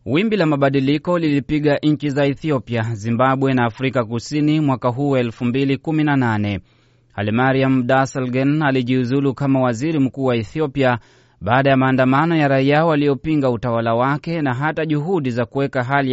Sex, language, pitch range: male, Swahili, 125-145 Hz